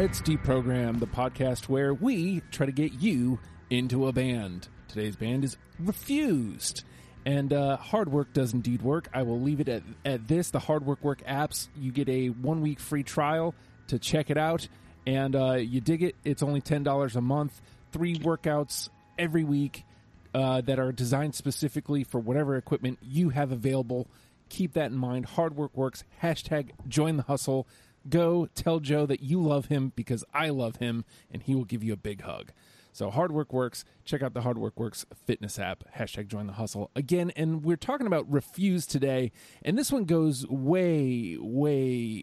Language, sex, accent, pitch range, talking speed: English, male, American, 120-150 Hz, 185 wpm